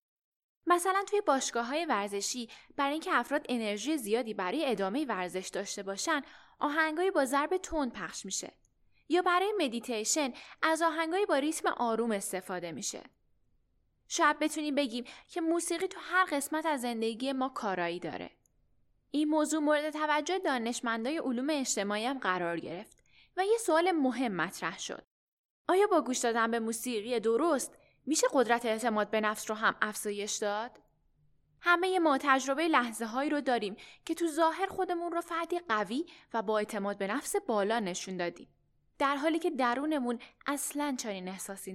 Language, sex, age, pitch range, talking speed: Persian, female, 10-29, 210-310 Hz, 145 wpm